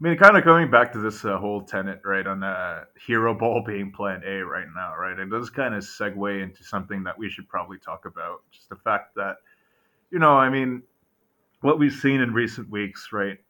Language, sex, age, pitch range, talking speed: English, male, 30-49, 100-125 Hz, 220 wpm